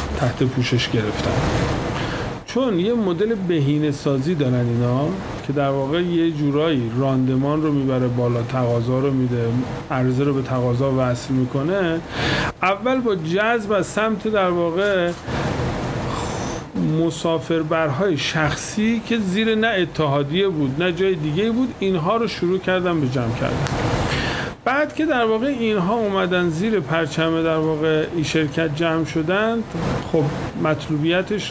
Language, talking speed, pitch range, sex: Persian, 130 wpm, 135-190 Hz, male